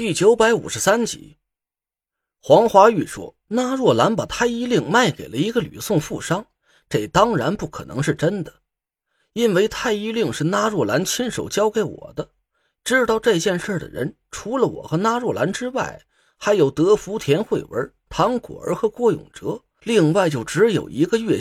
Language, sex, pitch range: Chinese, male, 200-245 Hz